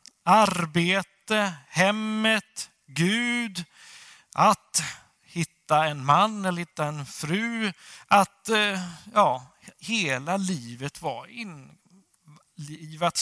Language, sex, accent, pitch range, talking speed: Swedish, male, native, 150-225 Hz, 75 wpm